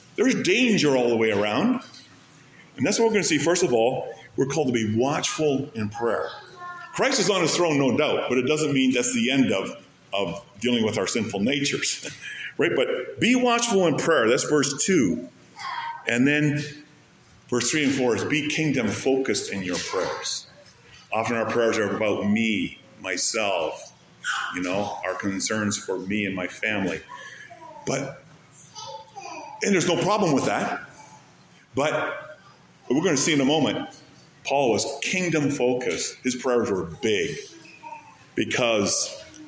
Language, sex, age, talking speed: English, male, 50-69, 165 wpm